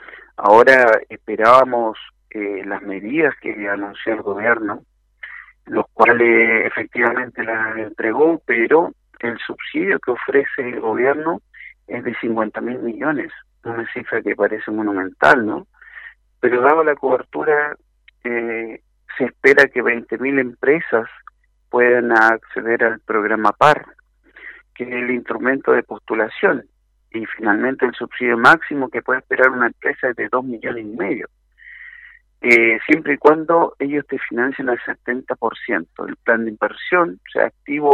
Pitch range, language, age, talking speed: 115-150 Hz, Spanish, 50-69, 135 wpm